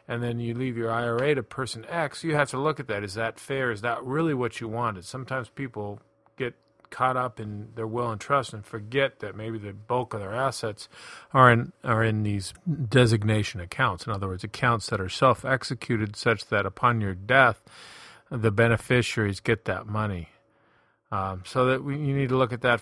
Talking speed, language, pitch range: 200 wpm, English, 105-130 Hz